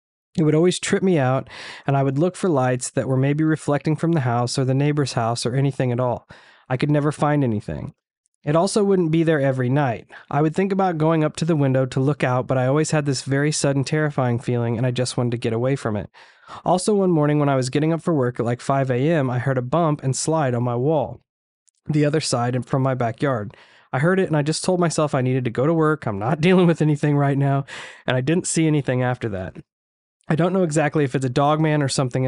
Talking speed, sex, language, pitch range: 255 wpm, male, English, 130-160 Hz